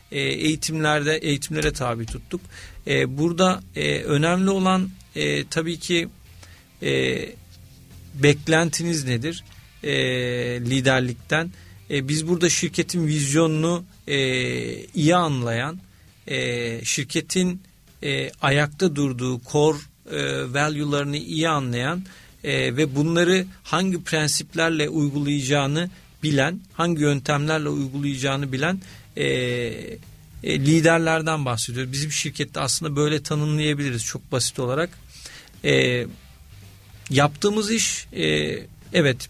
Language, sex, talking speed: Turkish, male, 95 wpm